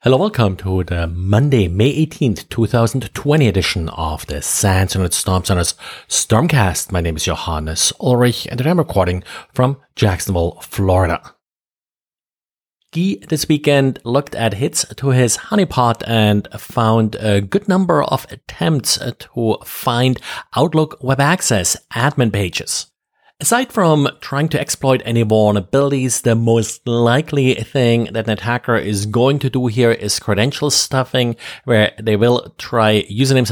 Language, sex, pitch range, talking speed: English, male, 105-130 Hz, 140 wpm